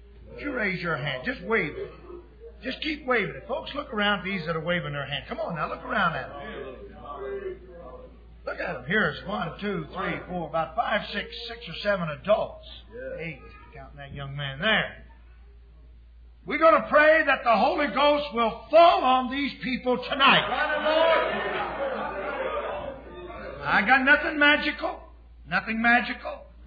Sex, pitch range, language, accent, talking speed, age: male, 185-290 Hz, English, American, 160 wpm, 50-69